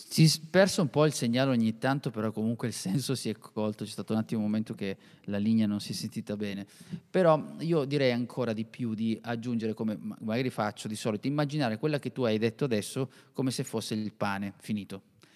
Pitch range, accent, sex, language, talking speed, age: 110-145 Hz, native, male, Italian, 220 wpm, 30-49